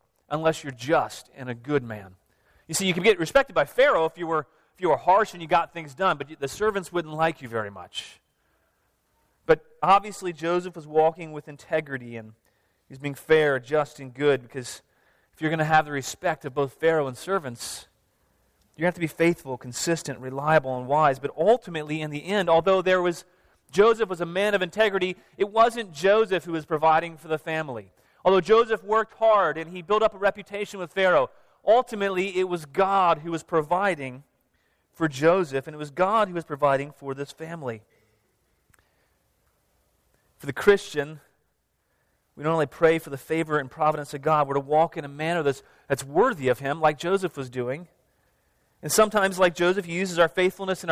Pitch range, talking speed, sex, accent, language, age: 145-185 Hz, 190 wpm, male, American, English, 30-49